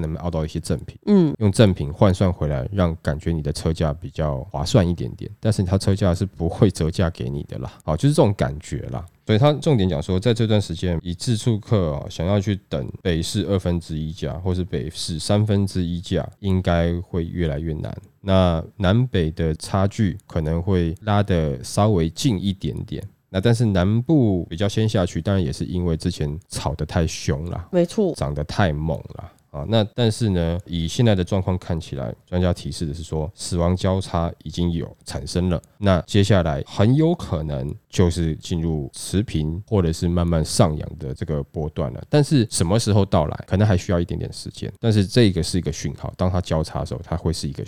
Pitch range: 80-100 Hz